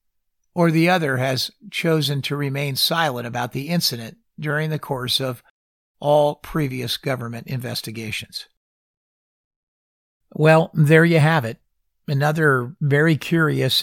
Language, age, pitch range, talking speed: English, 50-69, 115-155 Hz, 115 wpm